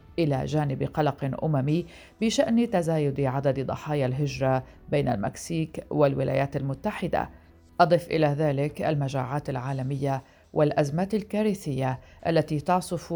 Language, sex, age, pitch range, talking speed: Arabic, female, 40-59, 130-160 Hz, 100 wpm